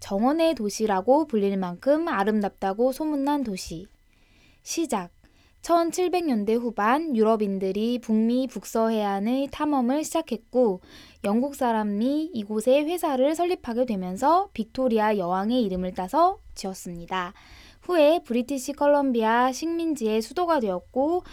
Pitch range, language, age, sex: 195-275 Hz, Korean, 20-39, female